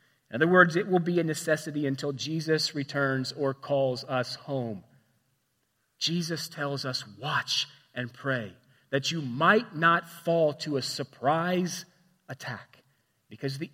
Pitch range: 130-170 Hz